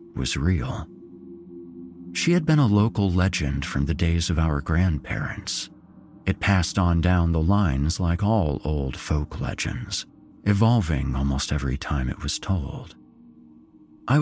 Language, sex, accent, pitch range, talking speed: English, male, American, 75-105 Hz, 140 wpm